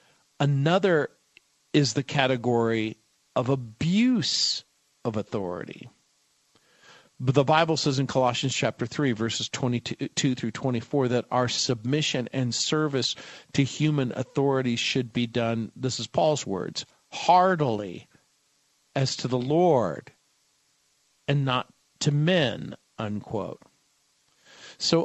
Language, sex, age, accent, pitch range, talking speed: English, male, 50-69, American, 120-145 Hz, 110 wpm